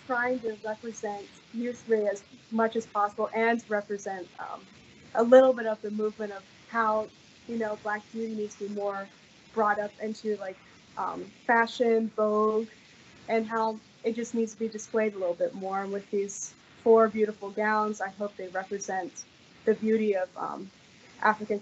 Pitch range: 205-225 Hz